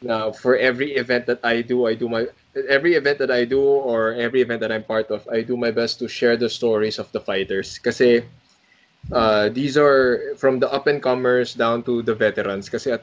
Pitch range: 115-130 Hz